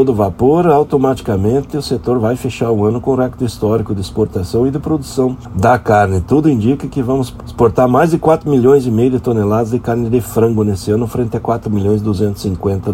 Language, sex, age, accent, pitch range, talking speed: Portuguese, male, 60-79, Brazilian, 105-135 Hz, 210 wpm